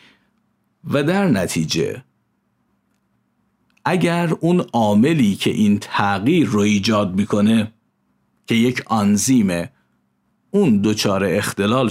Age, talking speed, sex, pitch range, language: 50-69, 90 wpm, male, 105-160 Hz, Persian